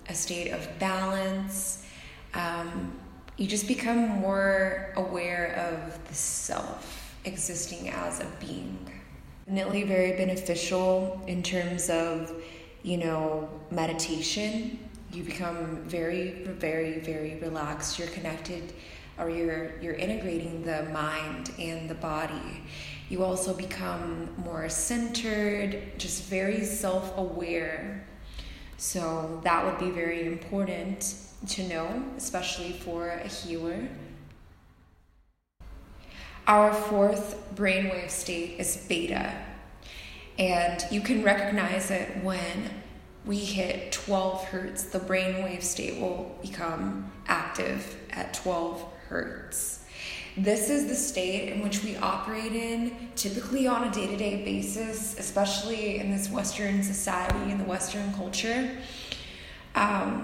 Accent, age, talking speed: American, 20-39, 110 wpm